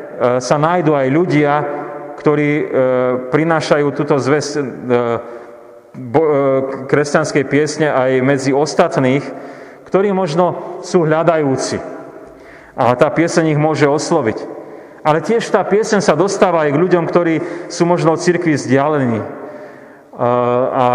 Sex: male